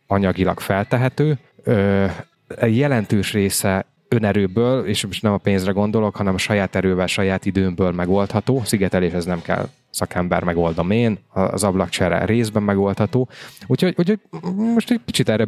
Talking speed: 145 wpm